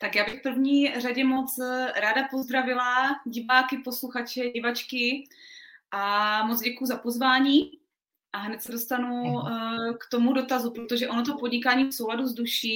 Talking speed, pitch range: 145 wpm, 225-255 Hz